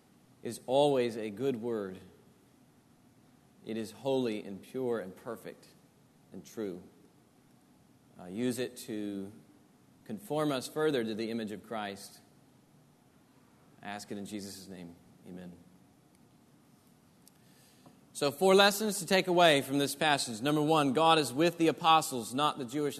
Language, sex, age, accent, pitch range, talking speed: English, male, 40-59, American, 130-160 Hz, 135 wpm